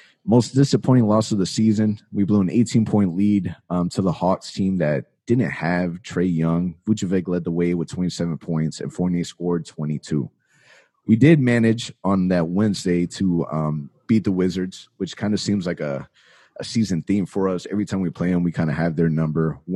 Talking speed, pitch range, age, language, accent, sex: 200 wpm, 85-105 Hz, 30-49, English, American, male